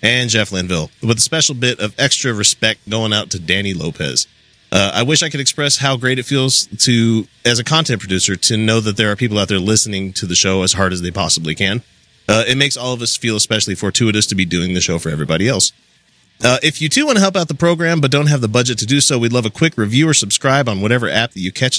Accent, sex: American, male